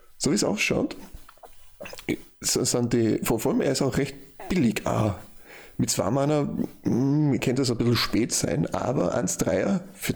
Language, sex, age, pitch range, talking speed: German, male, 30-49, 105-125 Hz, 155 wpm